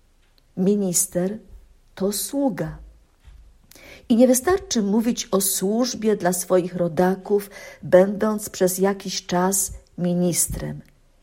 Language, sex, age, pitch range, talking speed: Polish, female, 50-69, 180-225 Hz, 90 wpm